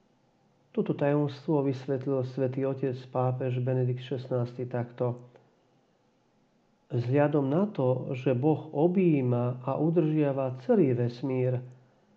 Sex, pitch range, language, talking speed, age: male, 125-155 Hz, Slovak, 95 wpm, 50-69